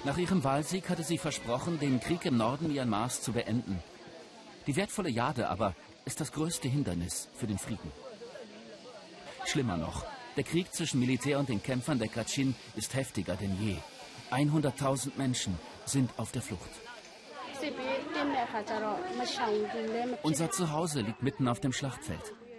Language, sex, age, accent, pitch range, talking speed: German, male, 50-69, German, 100-150 Hz, 140 wpm